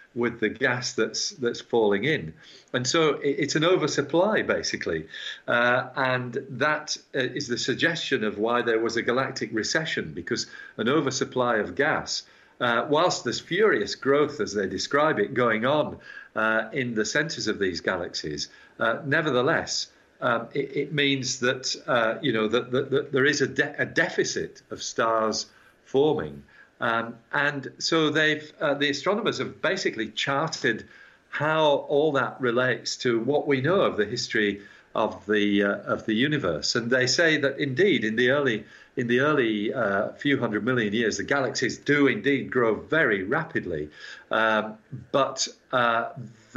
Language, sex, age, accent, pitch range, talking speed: English, male, 50-69, British, 115-145 Hz, 160 wpm